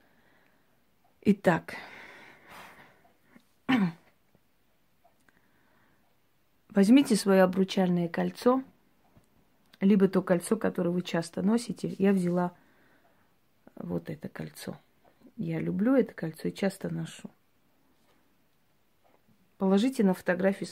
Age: 30-49